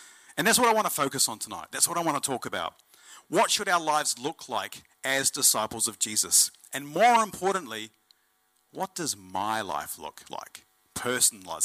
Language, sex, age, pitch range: English, male, 40-59, 105-160 Hz